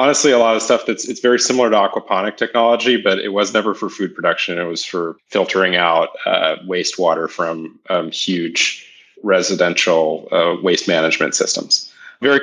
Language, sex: English, male